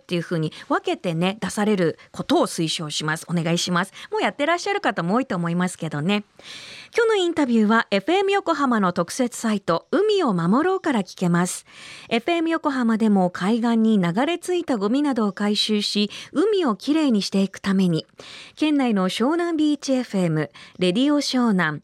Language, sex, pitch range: Japanese, female, 180-290 Hz